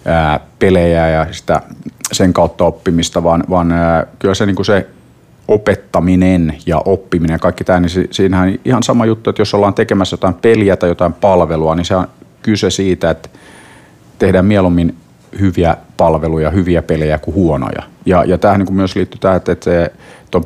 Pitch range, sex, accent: 85-95 Hz, male, native